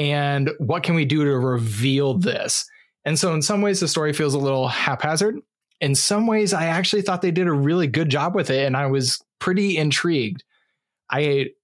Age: 20-39